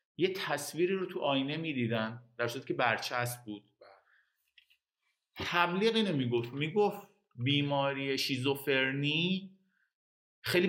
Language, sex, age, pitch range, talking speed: Persian, male, 50-69, 120-165 Hz, 95 wpm